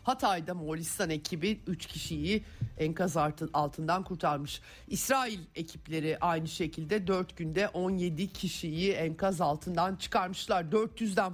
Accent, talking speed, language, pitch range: native, 105 wpm, Turkish, 155-205 Hz